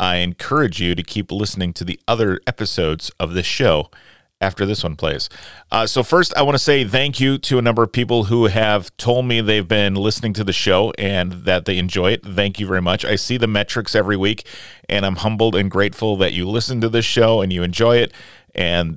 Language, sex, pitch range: English, male, 95-115 Hz